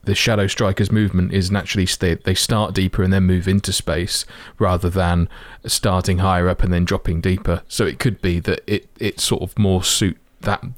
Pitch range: 90-100 Hz